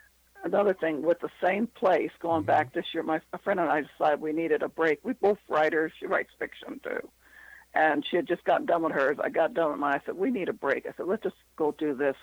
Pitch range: 145-195 Hz